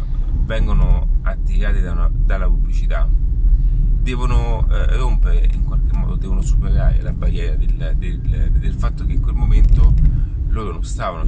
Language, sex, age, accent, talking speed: Italian, male, 30-49, native, 130 wpm